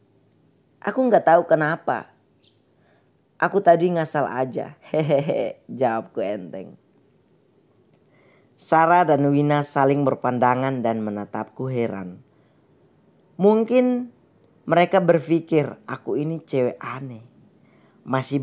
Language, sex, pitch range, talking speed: Indonesian, female, 125-165 Hz, 90 wpm